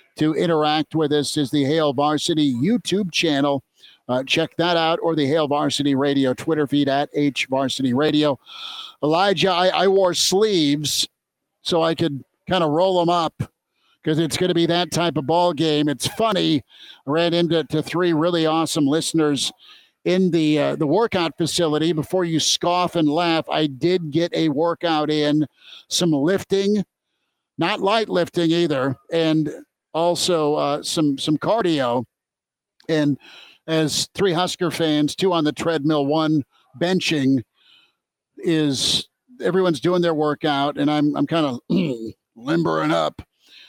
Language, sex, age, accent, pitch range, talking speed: English, male, 50-69, American, 145-175 Hz, 150 wpm